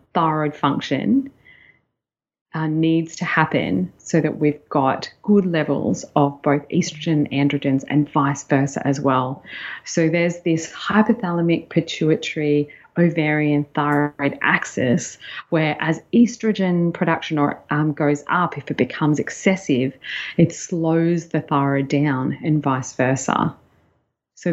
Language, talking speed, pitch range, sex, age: English, 115 wpm, 145-170 Hz, female, 30-49